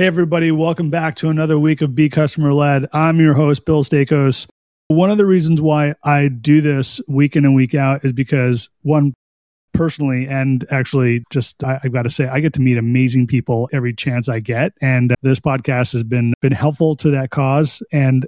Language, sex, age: English, male, 30-49